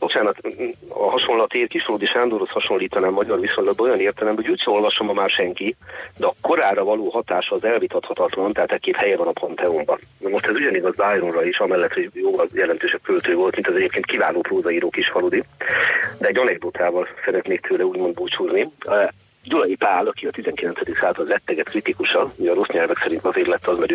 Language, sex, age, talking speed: Hungarian, male, 40-59, 190 wpm